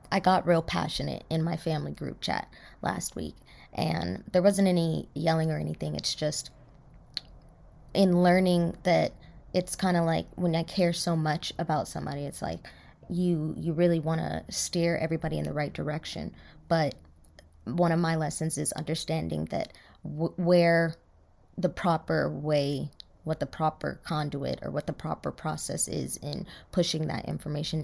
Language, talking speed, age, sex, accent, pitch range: English, 155 wpm, 20-39, female, American, 150-175 Hz